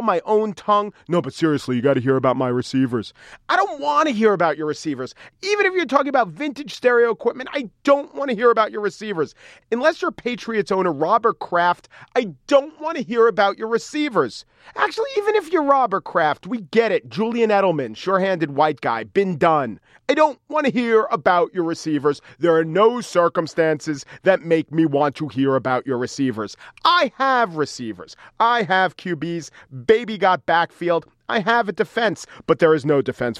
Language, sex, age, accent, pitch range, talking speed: English, male, 40-59, American, 145-240 Hz, 190 wpm